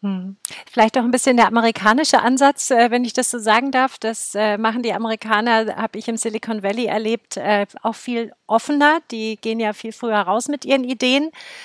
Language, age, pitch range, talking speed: German, 40-59, 225-275 Hz, 180 wpm